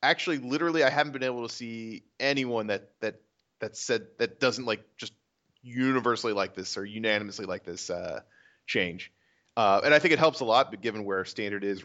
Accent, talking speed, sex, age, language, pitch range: American, 205 wpm, male, 30-49, English, 100-130 Hz